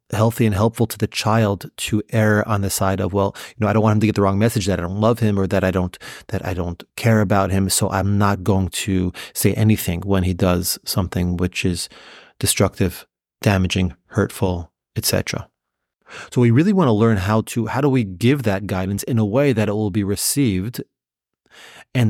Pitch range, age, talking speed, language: 95-115 Hz, 30-49, 215 wpm, English